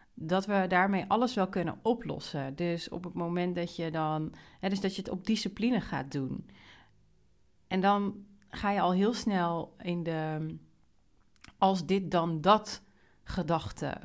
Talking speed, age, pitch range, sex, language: 160 wpm, 40-59, 155-195 Hz, female, Dutch